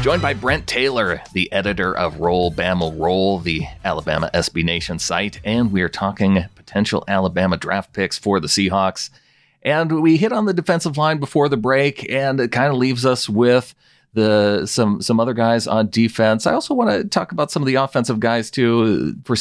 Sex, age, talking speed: male, 40-59, 190 wpm